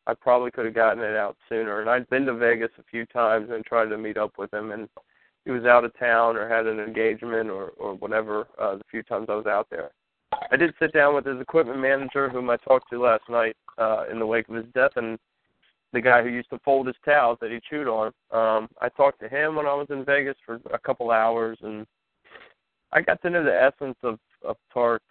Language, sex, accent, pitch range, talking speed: English, male, American, 110-130 Hz, 245 wpm